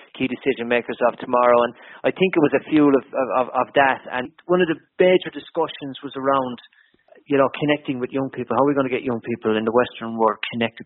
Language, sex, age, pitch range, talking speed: English, male, 30-49, 115-135 Hz, 230 wpm